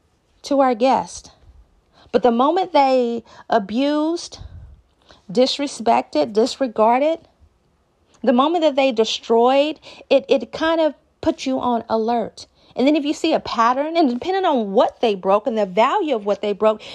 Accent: American